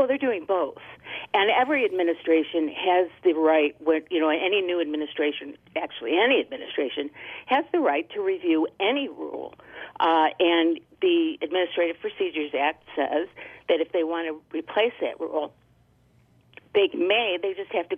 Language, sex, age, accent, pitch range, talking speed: English, female, 50-69, American, 150-180 Hz, 155 wpm